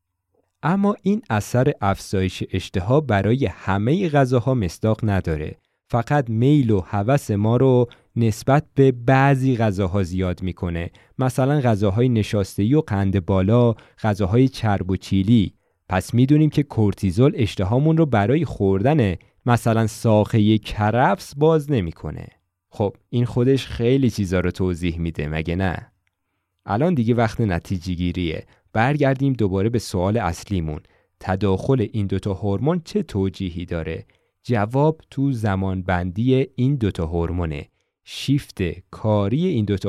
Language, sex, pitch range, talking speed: Persian, male, 95-130 Hz, 125 wpm